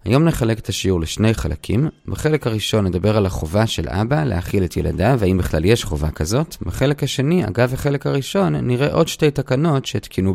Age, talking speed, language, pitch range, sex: 30-49, 180 wpm, Hebrew, 90-140 Hz, male